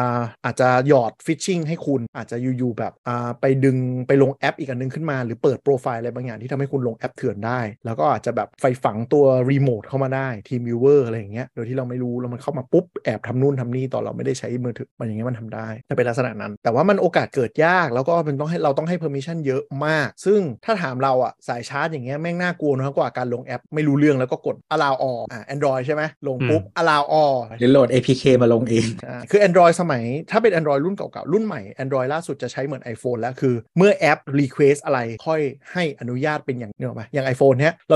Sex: male